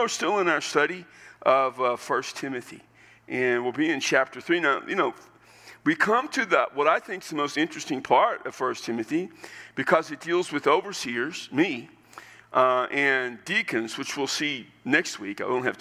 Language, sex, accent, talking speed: English, male, American, 195 wpm